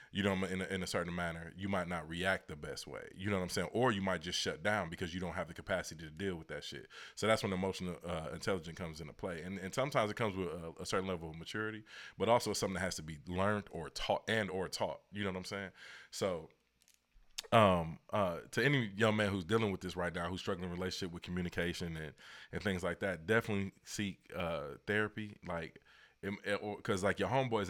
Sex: male